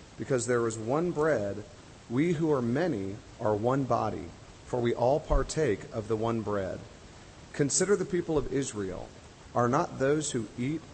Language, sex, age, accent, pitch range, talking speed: English, male, 40-59, American, 110-145 Hz, 165 wpm